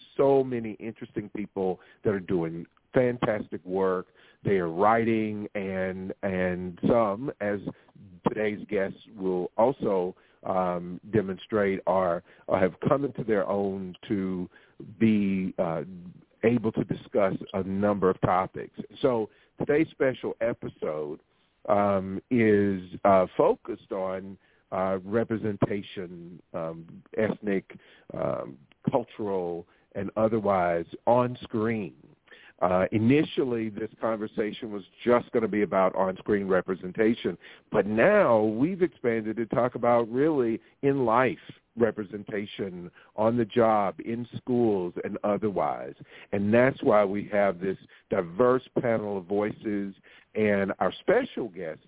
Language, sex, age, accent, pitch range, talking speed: English, male, 50-69, American, 95-115 Hz, 115 wpm